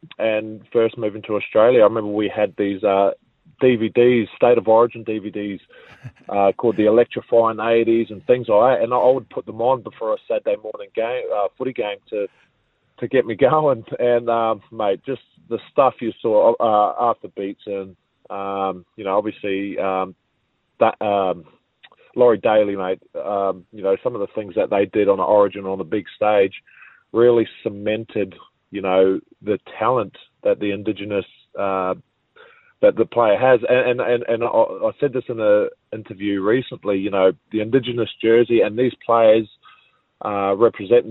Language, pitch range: English, 100-120 Hz